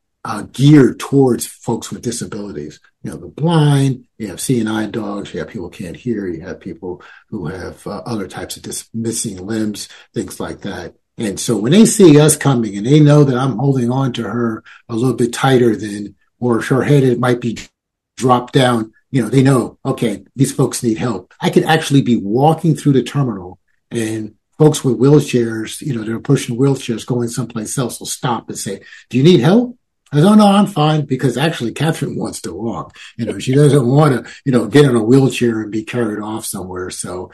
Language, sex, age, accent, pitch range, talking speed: English, male, 50-69, American, 110-140 Hz, 210 wpm